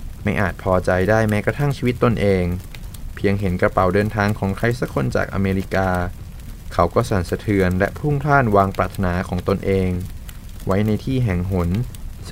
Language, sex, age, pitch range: Thai, male, 20-39, 90-110 Hz